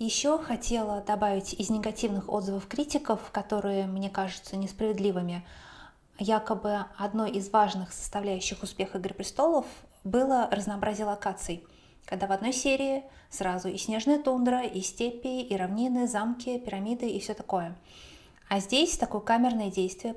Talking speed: 130 wpm